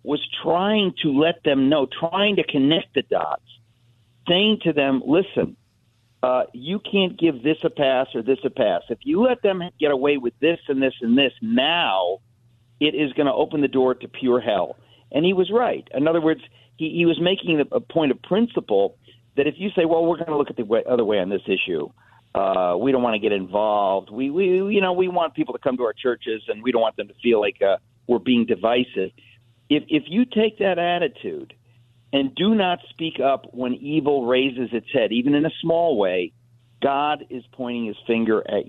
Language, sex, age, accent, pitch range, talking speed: English, male, 50-69, American, 120-165 Hz, 215 wpm